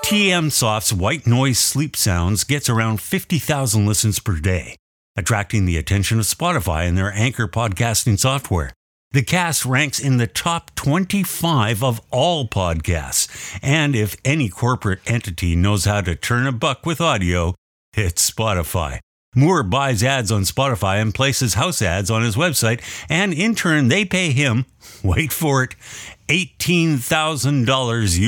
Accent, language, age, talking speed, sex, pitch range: American, English, 50-69, 145 wpm, male, 95-140 Hz